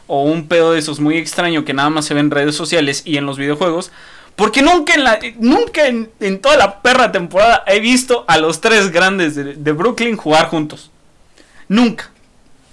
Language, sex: Spanish, male